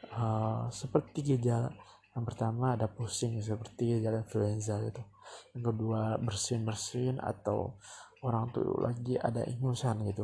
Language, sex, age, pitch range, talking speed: Indonesian, male, 20-39, 110-125 Hz, 130 wpm